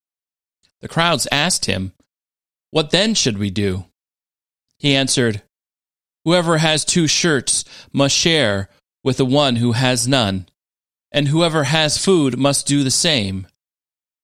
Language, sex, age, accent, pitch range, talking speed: English, male, 30-49, American, 95-160 Hz, 130 wpm